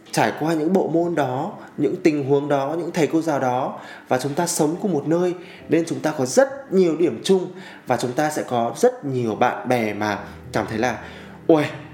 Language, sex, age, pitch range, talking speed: Vietnamese, male, 20-39, 120-165 Hz, 220 wpm